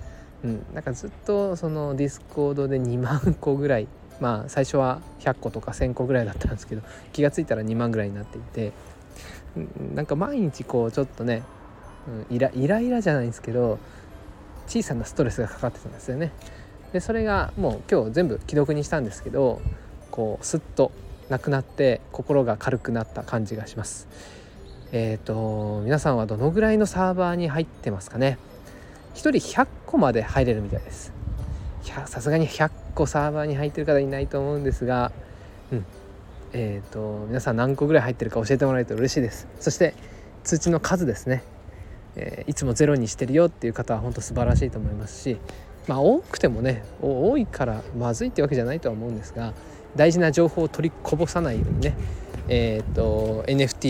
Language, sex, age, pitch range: Japanese, male, 20-39, 110-145 Hz